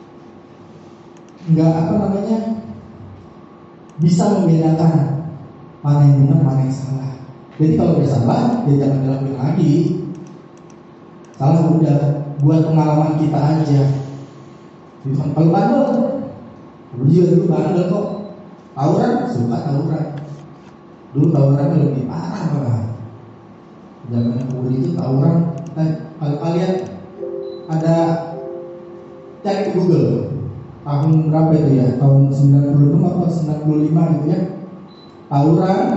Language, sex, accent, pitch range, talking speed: Indonesian, male, native, 140-175 Hz, 95 wpm